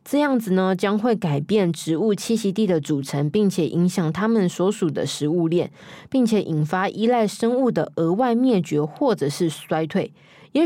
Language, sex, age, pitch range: Chinese, female, 20-39, 170-230 Hz